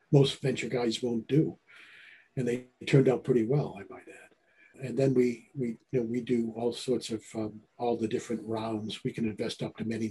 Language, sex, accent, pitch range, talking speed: English, male, American, 110-135 Hz, 215 wpm